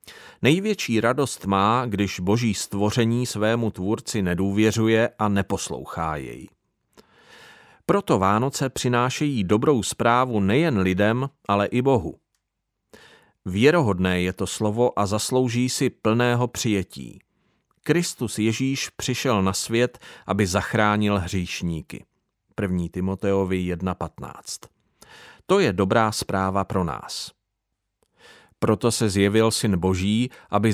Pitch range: 95-125 Hz